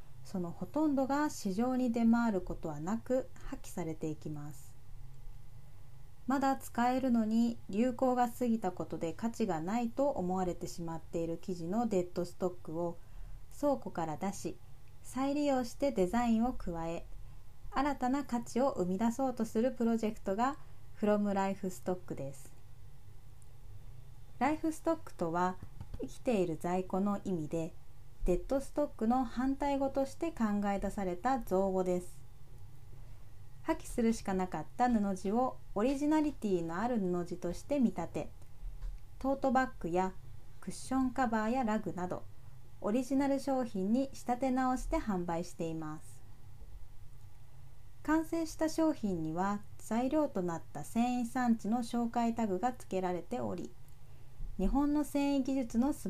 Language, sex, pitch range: Japanese, female, 155-250 Hz